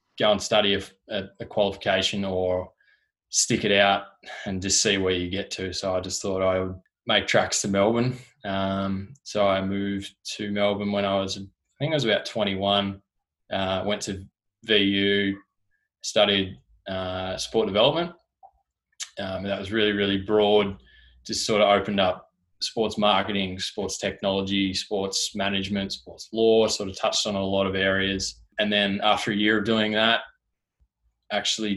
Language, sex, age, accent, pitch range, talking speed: English, male, 20-39, Australian, 95-105 Hz, 160 wpm